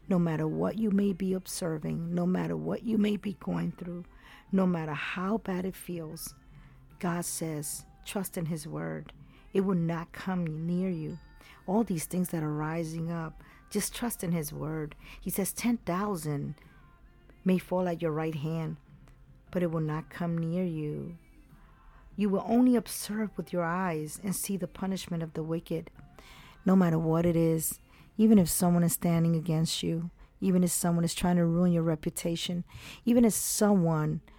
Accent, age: American, 40-59